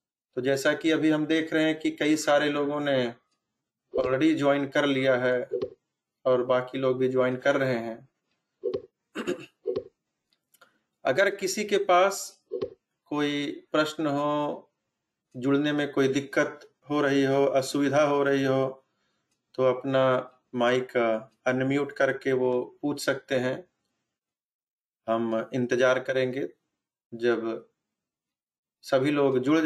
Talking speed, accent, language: 120 wpm, native, Hindi